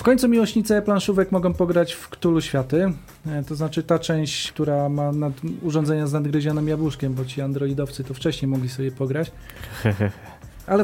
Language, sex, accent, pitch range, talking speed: Polish, male, native, 140-165 Hz, 160 wpm